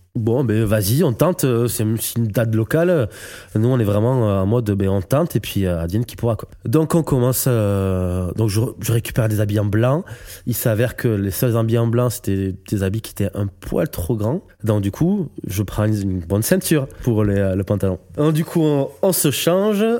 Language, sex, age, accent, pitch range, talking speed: French, male, 20-39, French, 100-135 Hz, 215 wpm